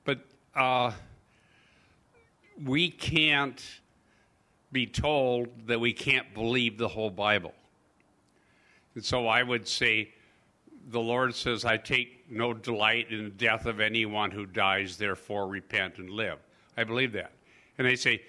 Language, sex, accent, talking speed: English, male, American, 140 wpm